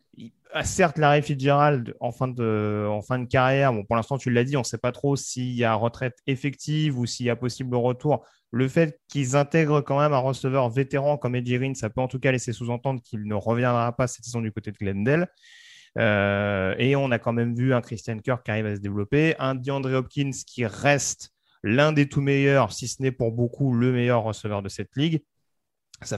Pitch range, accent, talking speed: 115-140 Hz, French, 215 wpm